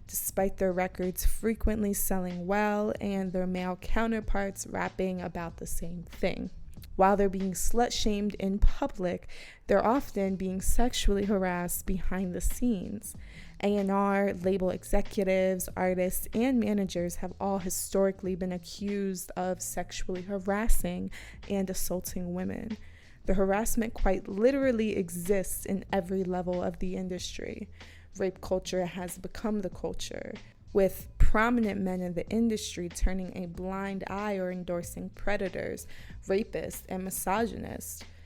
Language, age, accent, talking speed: English, 20-39, American, 125 wpm